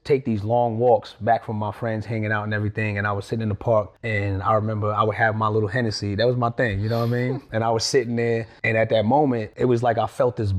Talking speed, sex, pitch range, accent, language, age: 295 wpm, male, 110-145 Hz, American, English, 30-49